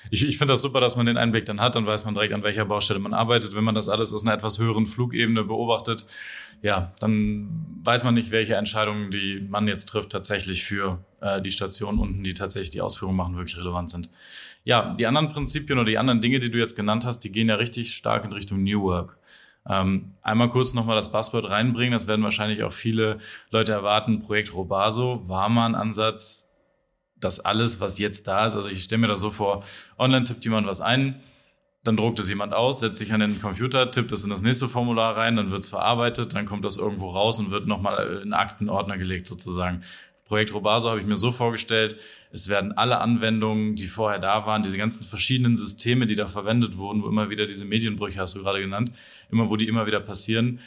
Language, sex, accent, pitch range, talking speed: German, male, German, 100-115 Hz, 220 wpm